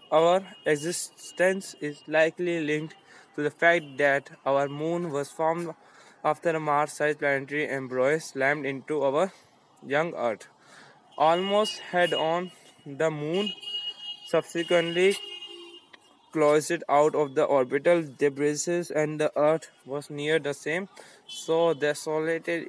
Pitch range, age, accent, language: 145-165 Hz, 20-39, Indian, English